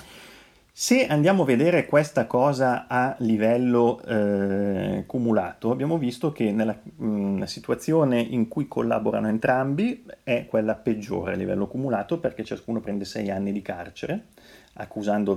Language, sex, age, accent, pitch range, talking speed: Italian, male, 30-49, native, 95-125 Hz, 135 wpm